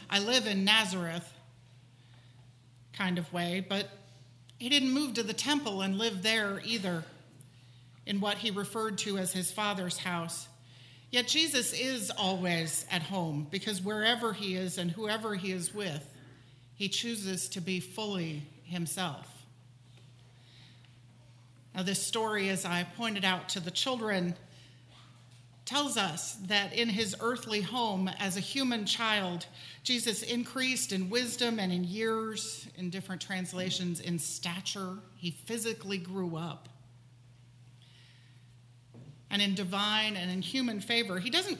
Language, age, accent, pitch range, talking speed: English, 50-69, American, 145-220 Hz, 135 wpm